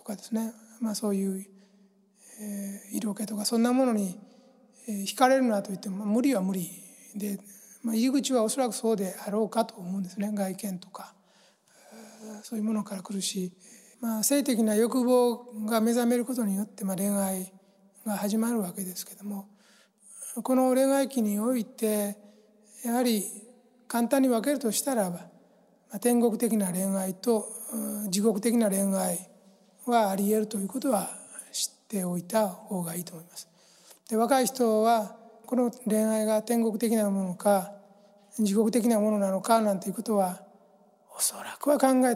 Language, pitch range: Japanese, 200-235 Hz